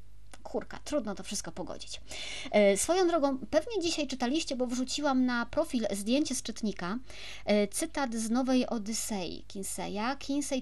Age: 40-59